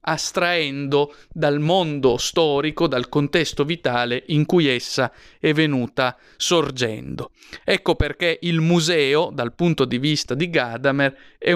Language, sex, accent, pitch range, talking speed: Italian, male, native, 135-170 Hz, 125 wpm